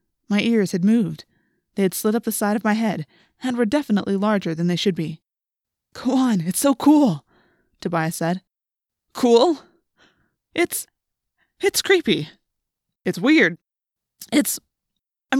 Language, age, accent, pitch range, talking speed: English, 20-39, American, 180-240 Hz, 140 wpm